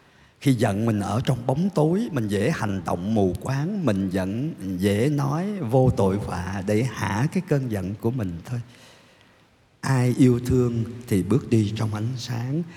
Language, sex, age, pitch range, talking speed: Vietnamese, male, 50-69, 105-145 Hz, 175 wpm